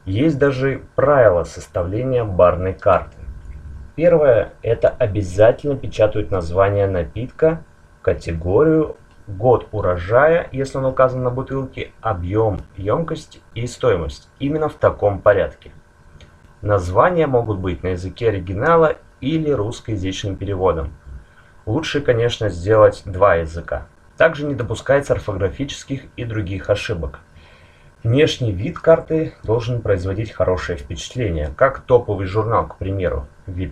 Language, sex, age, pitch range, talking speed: Russian, male, 30-49, 90-120 Hz, 110 wpm